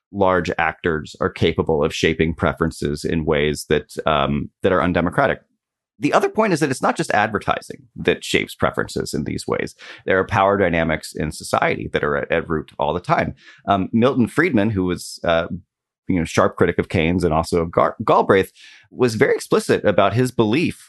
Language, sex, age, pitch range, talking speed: English, male, 30-49, 85-110 Hz, 190 wpm